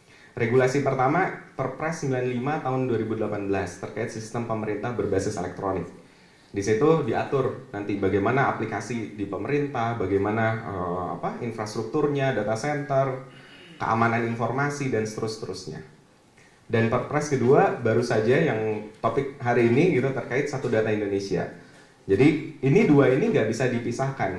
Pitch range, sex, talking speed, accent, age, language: 105-135 Hz, male, 120 wpm, native, 30-49, Indonesian